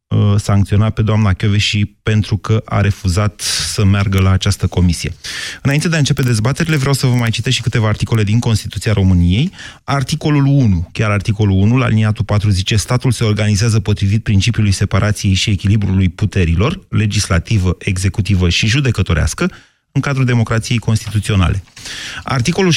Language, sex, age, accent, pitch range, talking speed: Romanian, male, 30-49, native, 100-125 Hz, 150 wpm